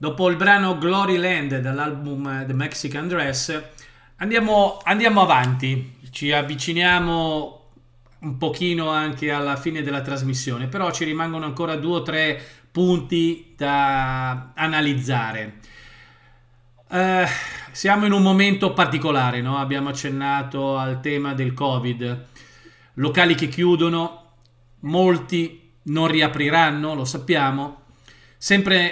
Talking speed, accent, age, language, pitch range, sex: 110 wpm, native, 40-59, Italian, 130-170 Hz, male